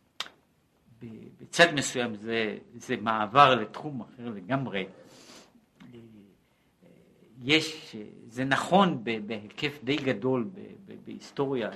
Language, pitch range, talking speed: Hebrew, 115-160 Hz, 75 wpm